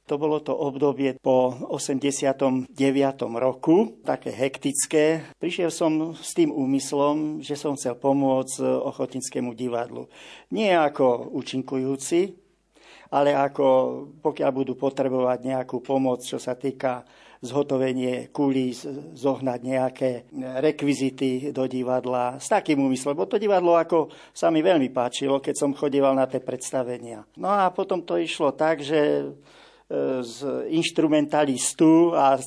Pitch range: 125-145 Hz